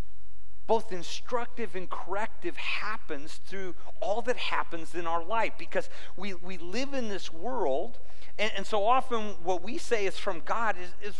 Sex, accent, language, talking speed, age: male, American, English, 165 wpm, 50-69